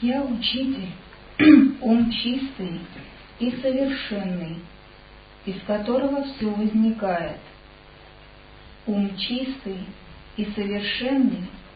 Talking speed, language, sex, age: 70 wpm, Russian, male, 50-69